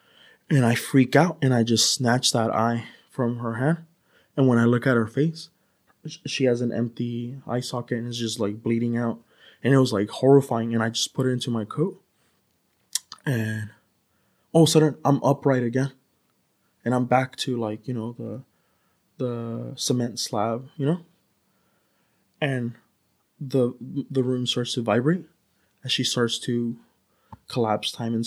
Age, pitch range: 20-39, 115-130 Hz